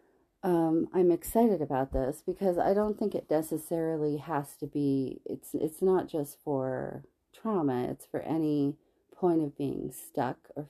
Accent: American